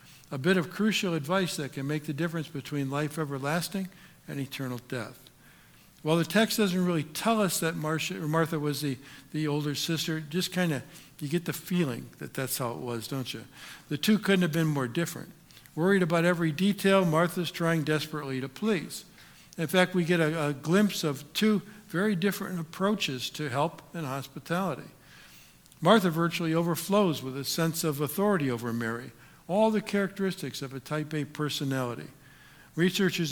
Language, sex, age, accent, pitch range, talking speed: English, male, 60-79, American, 140-180 Hz, 170 wpm